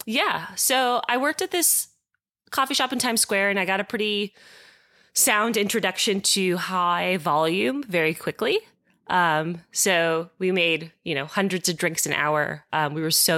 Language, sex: English, female